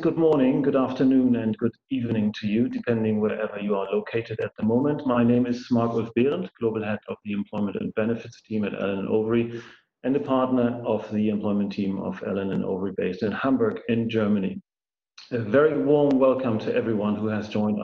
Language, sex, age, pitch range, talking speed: English, male, 40-59, 110-125 Hz, 200 wpm